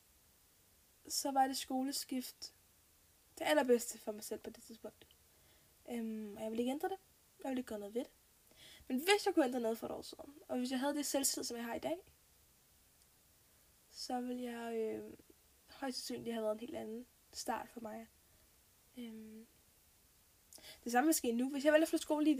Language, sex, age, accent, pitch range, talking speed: Danish, female, 10-29, native, 225-295 Hz, 195 wpm